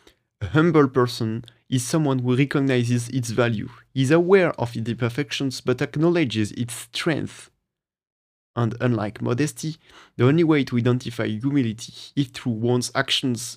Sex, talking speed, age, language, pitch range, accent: male, 135 wpm, 30-49, English, 115-140 Hz, French